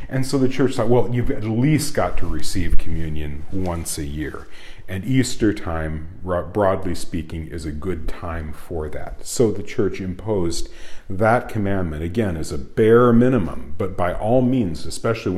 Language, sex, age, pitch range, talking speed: English, male, 40-59, 90-125 Hz, 170 wpm